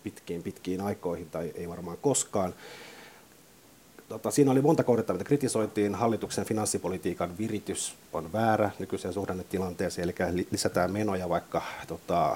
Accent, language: native, Finnish